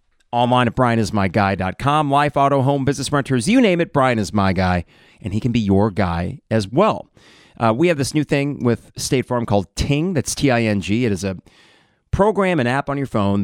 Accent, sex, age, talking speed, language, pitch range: American, male, 30-49, 200 wpm, English, 105-130 Hz